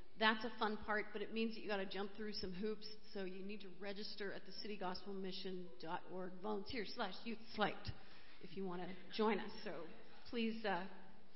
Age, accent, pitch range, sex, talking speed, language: 40-59, American, 190-230 Hz, female, 180 wpm, English